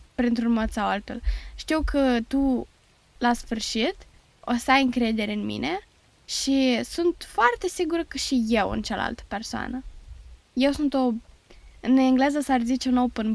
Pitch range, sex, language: 215-255 Hz, female, Romanian